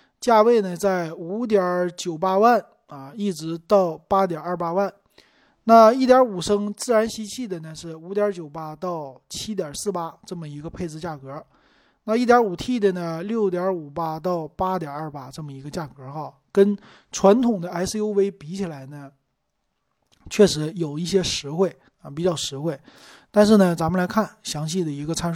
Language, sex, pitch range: Chinese, male, 155-205 Hz